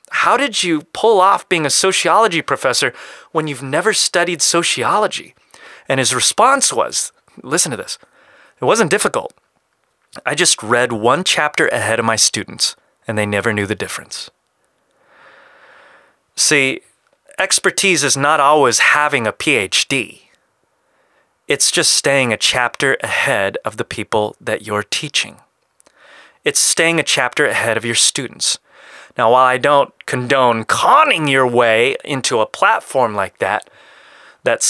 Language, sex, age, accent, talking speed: English, male, 30-49, American, 140 wpm